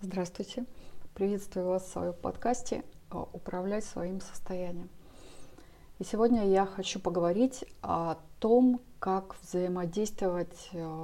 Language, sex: Russian, female